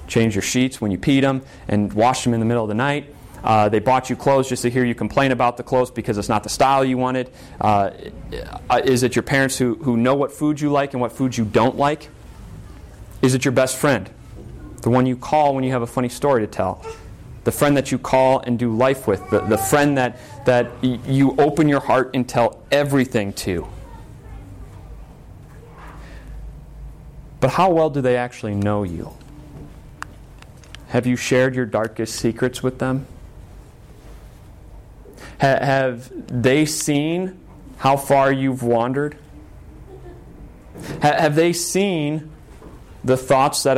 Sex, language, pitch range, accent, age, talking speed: male, English, 115-135 Hz, American, 30-49, 170 wpm